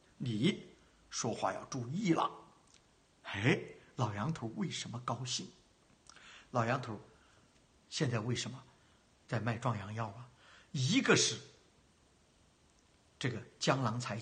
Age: 60-79